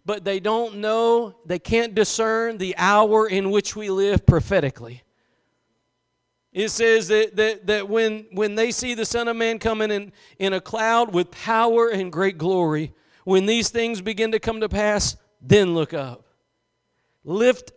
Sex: male